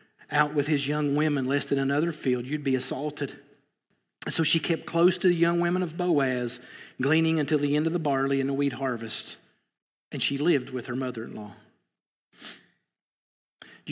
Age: 50-69